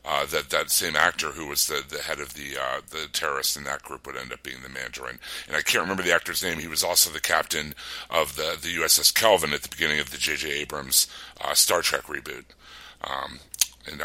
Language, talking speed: English, 230 wpm